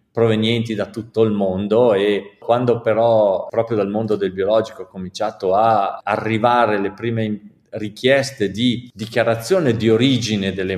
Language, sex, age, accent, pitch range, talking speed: Italian, male, 40-59, native, 105-125 Hz, 140 wpm